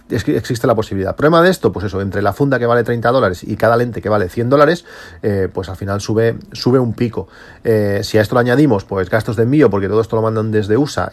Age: 40-59